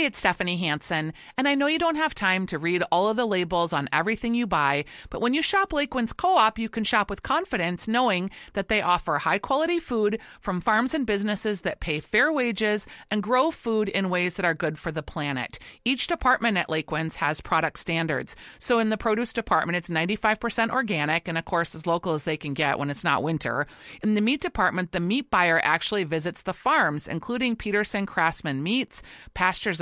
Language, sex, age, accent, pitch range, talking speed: English, female, 40-59, American, 165-230 Hz, 200 wpm